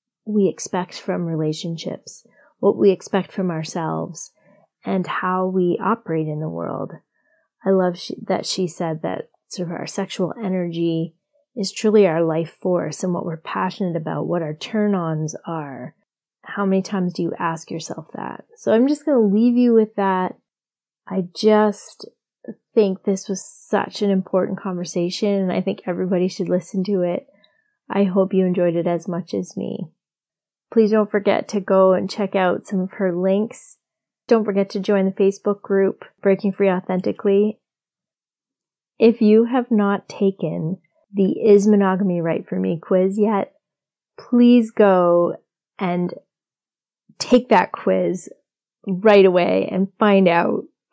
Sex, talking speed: female, 155 wpm